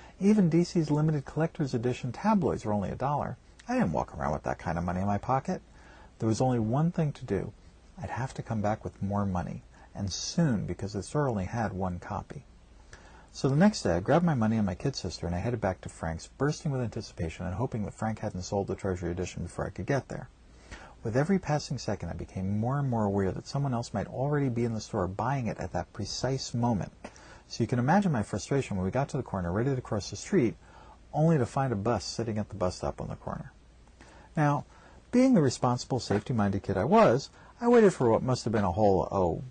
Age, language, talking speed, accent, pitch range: 40-59, English, 235 wpm, American, 100-145 Hz